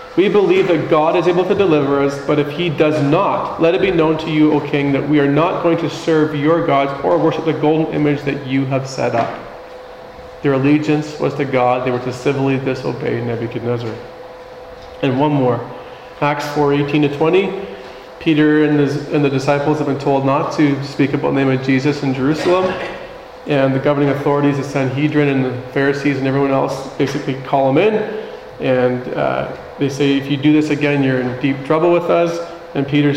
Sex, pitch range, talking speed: male, 135-160 Hz, 200 wpm